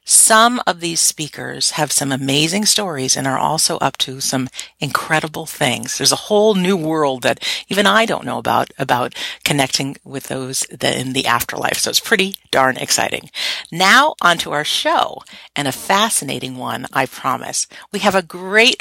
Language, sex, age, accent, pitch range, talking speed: English, female, 50-69, American, 135-195 Hz, 170 wpm